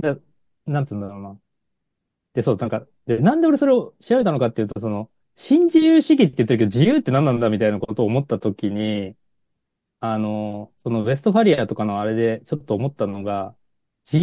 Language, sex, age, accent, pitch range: Japanese, male, 20-39, native, 110-170 Hz